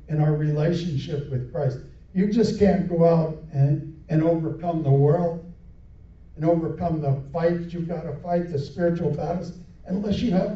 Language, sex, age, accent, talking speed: English, male, 60-79, American, 165 wpm